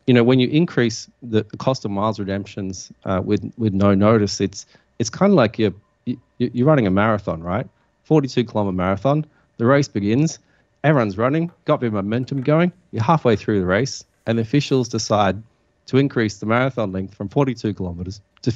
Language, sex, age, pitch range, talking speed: English, male, 30-49, 95-120 Hz, 180 wpm